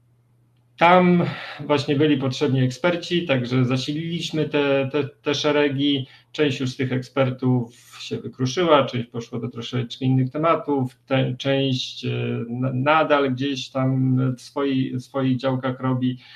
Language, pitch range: Polish, 125-150 Hz